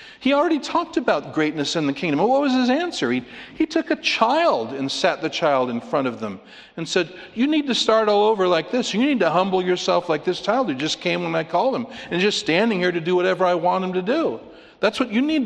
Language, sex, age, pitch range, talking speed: English, male, 50-69, 125-205 Hz, 255 wpm